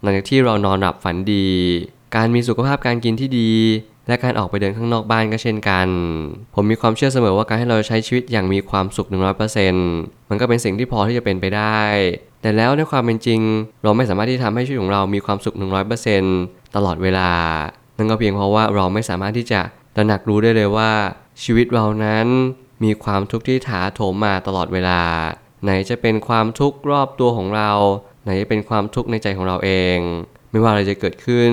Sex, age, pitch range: male, 20-39, 100-120 Hz